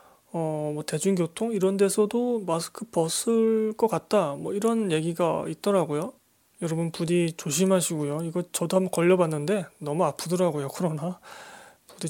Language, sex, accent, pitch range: Korean, male, native, 160-205 Hz